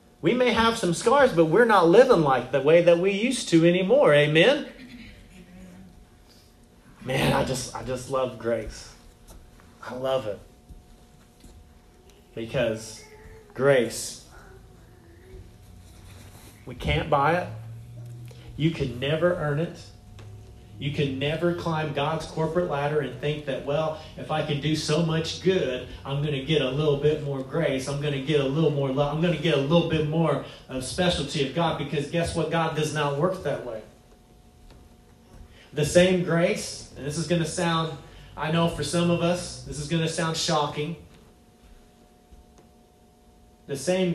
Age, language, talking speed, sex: 30-49, English, 160 wpm, male